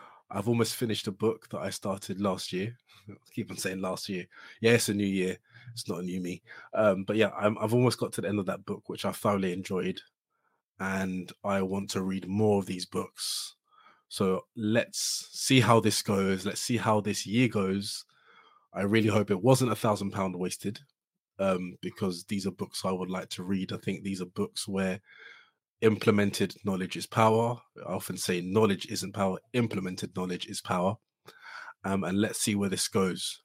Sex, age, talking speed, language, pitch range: male, 20-39, 195 wpm, English, 95-115 Hz